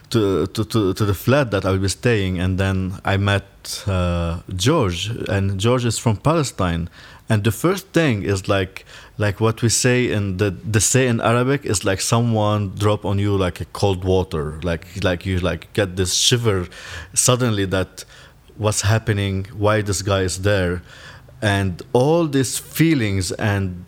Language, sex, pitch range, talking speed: English, male, 95-115 Hz, 170 wpm